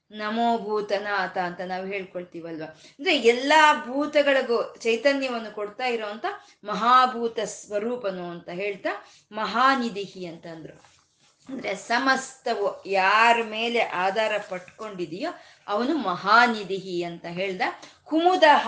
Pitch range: 200-270 Hz